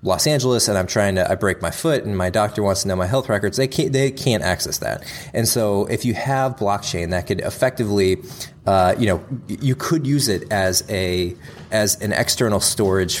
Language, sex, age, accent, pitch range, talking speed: English, male, 20-39, American, 95-120 Hz, 215 wpm